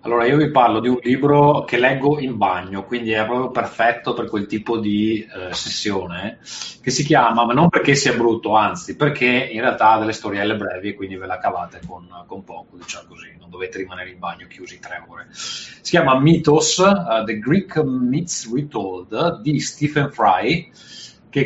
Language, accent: Italian, native